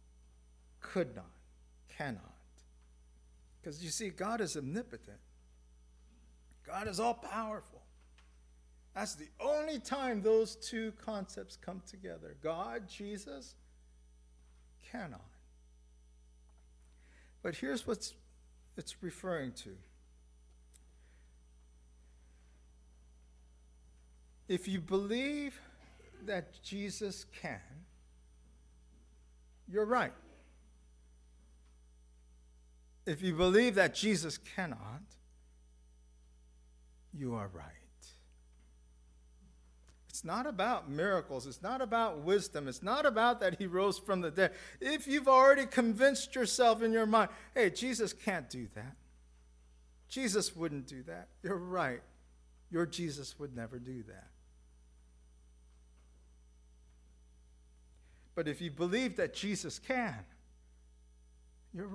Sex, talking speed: male, 95 wpm